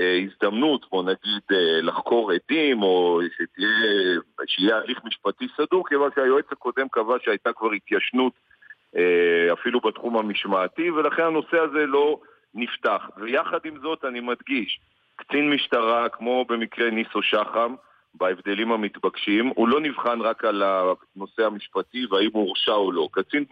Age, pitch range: 50-69, 100-150 Hz